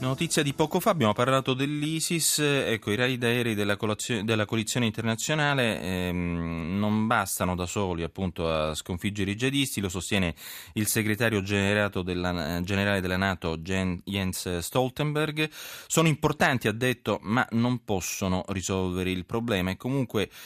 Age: 30-49